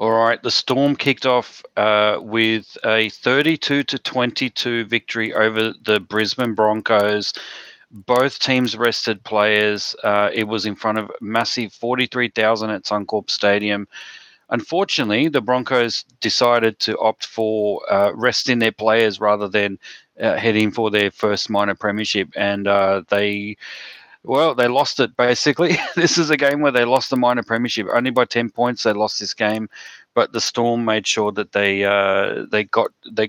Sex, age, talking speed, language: male, 30-49, 160 wpm, English